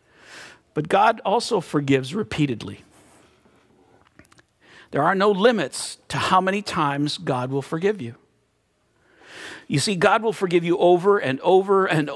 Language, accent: English, American